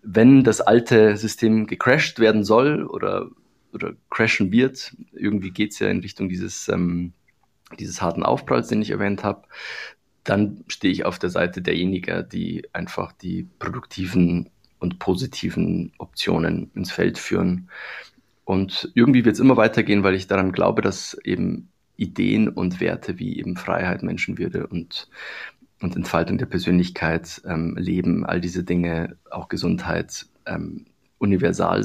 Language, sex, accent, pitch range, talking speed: German, male, German, 90-105 Hz, 145 wpm